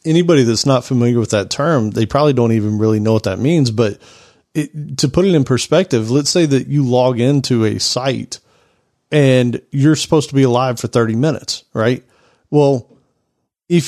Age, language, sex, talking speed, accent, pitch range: 40-59, English, male, 180 wpm, American, 120-150 Hz